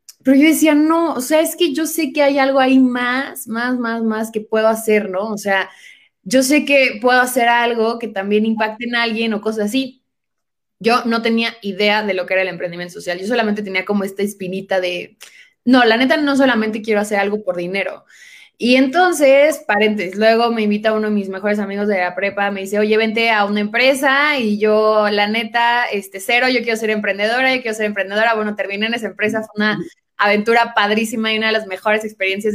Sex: female